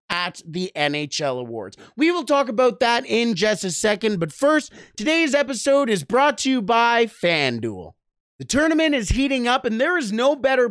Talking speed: 185 wpm